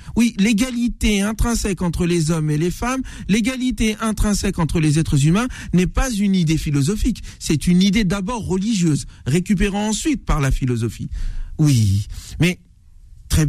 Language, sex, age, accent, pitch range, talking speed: French, male, 50-69, French, 145-215 Hz, 145 wpm